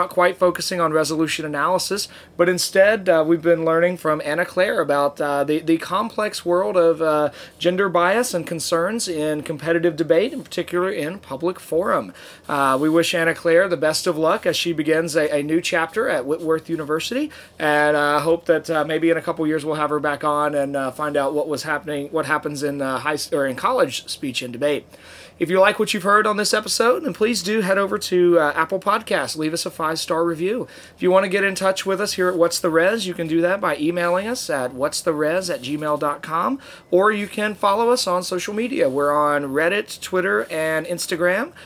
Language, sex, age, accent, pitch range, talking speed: English, male, 30-49, American, 150-185 Hz, 215 wpm